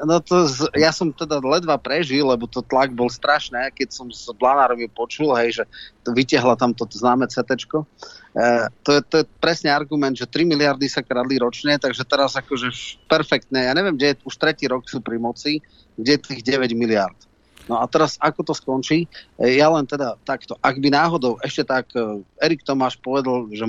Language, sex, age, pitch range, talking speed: Slovak, male, 30-49, 120-150 Hz, 200 wpm